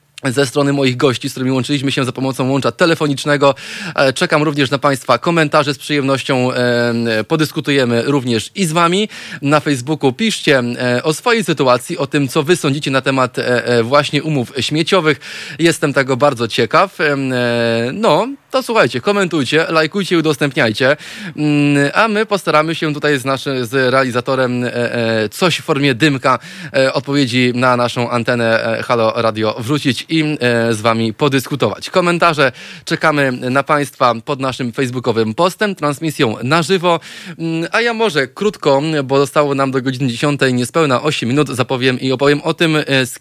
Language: Polish